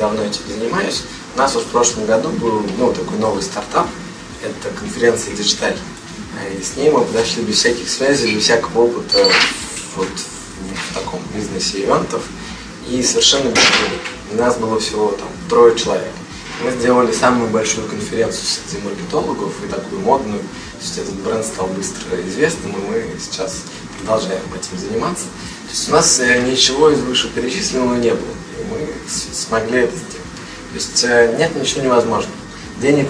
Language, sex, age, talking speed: Russian, male, 20-39, 160 wpm